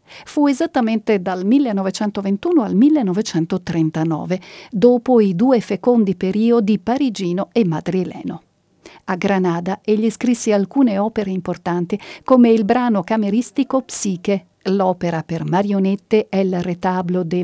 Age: 50-69